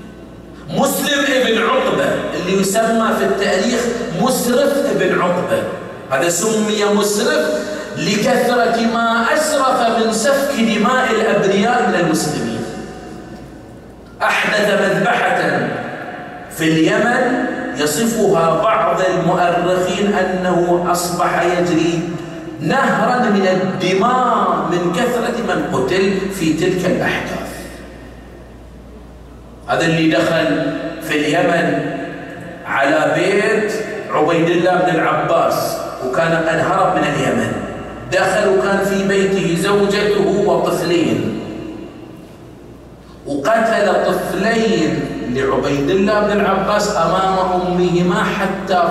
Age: 40-59